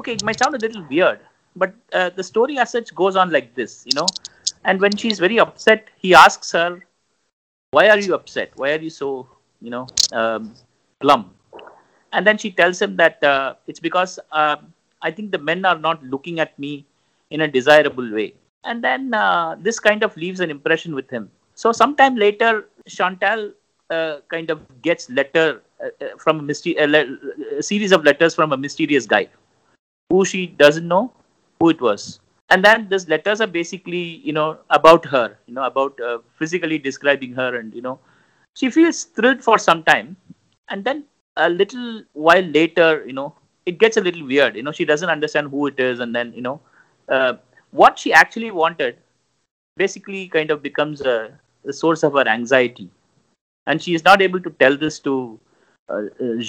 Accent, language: Indian, English